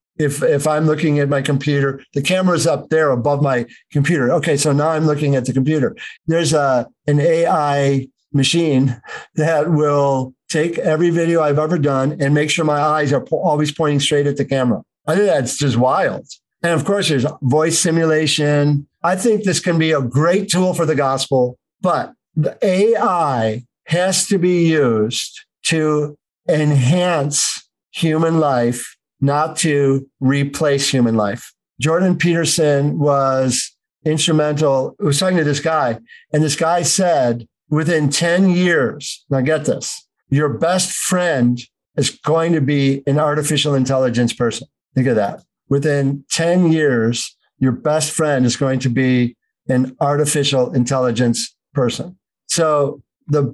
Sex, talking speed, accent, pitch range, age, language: male, 150 wpm, American, 135-160 Hz, 50-69, English